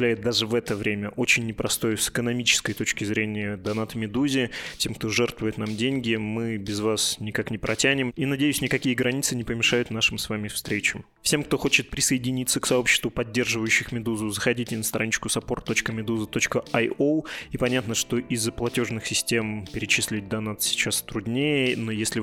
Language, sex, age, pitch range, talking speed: Russian, male, 20-39, 105-125 Hz, 155 wpm